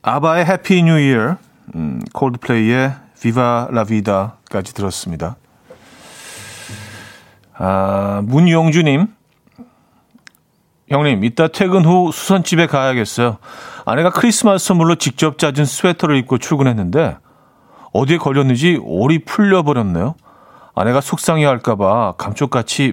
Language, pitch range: Korean, 115-170 Hz